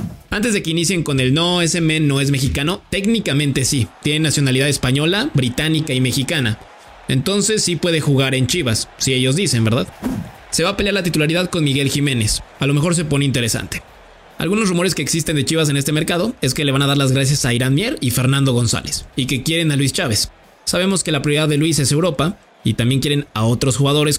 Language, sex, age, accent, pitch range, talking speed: English, male, 20-39, Mexican, 135-170 Hz, 220 wpm